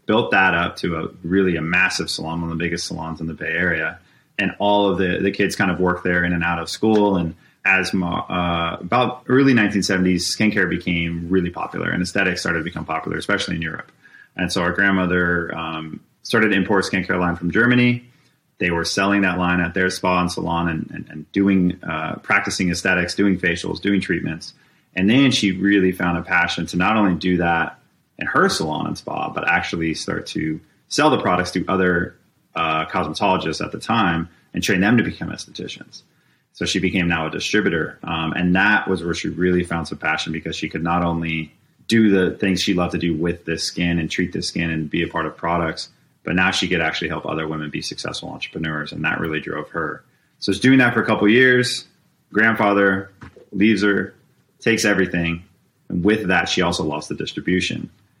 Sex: male